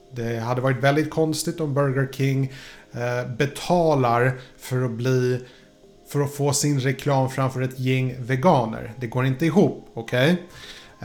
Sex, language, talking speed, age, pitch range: male, Swedish, 150 wpm, 30-49, 120-145 Hz